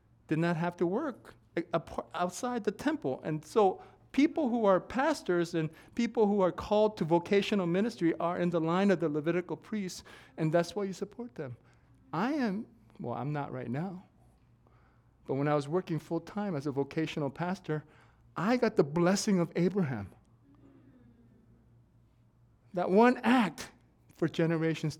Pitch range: 135-210 Hz